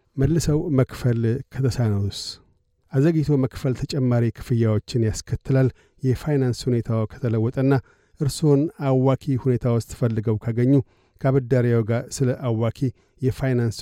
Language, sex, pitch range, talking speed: Amharic, male, 110-130 Hz, 90 wpm